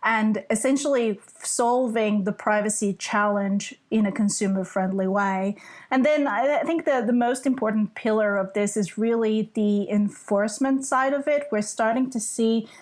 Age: 30-49